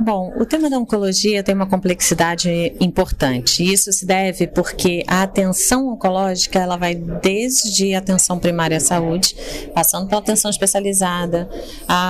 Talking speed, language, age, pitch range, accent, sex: 145 wpm, Portuguese, 30-49, 180-240 Hz, Brazilian, female